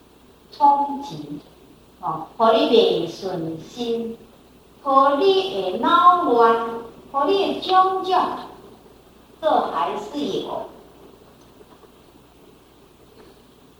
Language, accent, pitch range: Chinese, American, 240-390 Hz